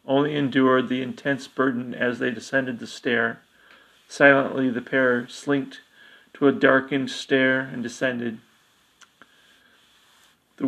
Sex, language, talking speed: male, English, 120 wpm